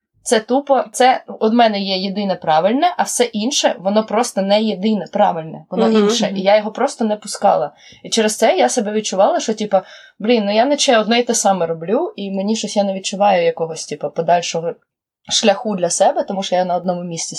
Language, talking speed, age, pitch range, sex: Ukrainian, 205 wpm, 20-39, 195-275 Hz, female